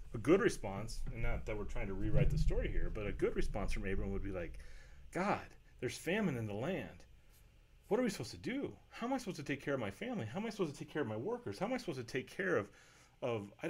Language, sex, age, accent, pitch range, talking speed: English, male, 30-49, American, 95-160 Hz, 280 wpm